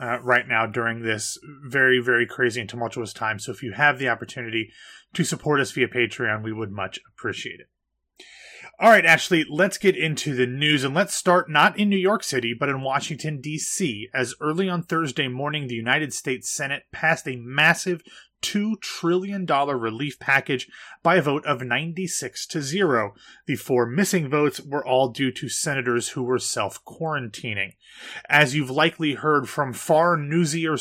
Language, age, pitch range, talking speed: English, 30-49, 125-160 Hz, 175 wpm